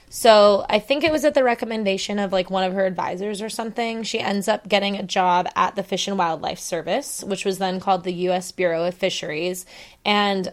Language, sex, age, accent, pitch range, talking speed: English, female, 20-39, American, 190-215 Hz, 215 wpm